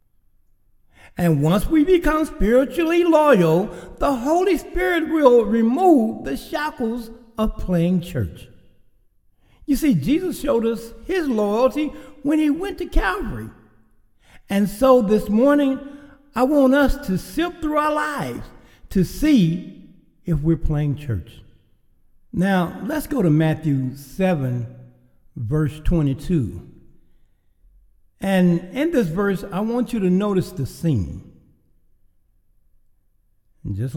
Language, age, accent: English, 60-79, American